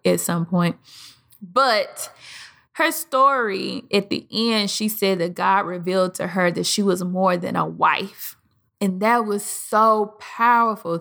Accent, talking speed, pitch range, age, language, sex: American, 155 wpm, 185-220 Hz, 20-39, English, female